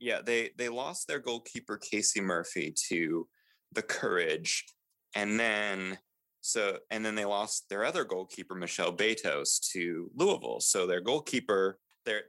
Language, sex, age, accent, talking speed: English, male, 20-39, American, 140 wpm